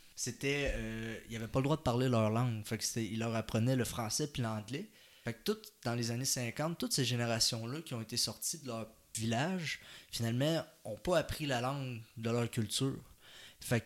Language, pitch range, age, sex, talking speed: French, 110-130 Hz, 20-39, male, 205 wpm